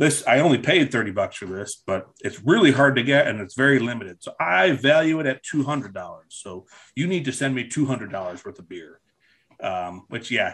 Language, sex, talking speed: English, male, 235 wpm